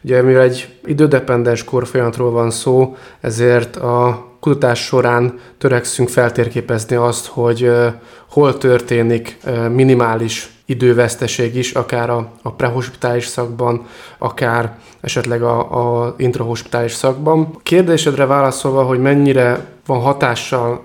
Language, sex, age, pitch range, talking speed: Hungarian, male, 20-39, 120-130 Hz, 105 wpm